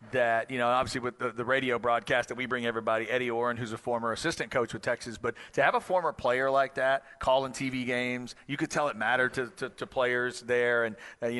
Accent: American